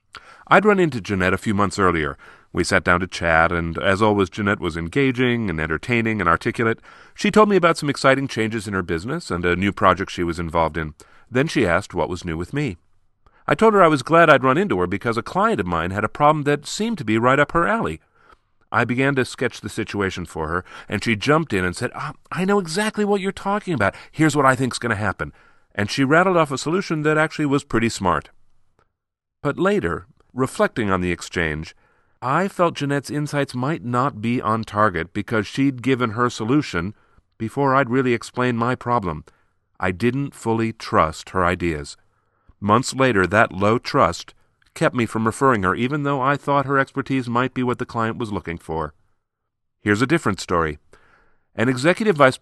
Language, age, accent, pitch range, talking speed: English, 40-59, American, 95-135 Hz, 205 wpm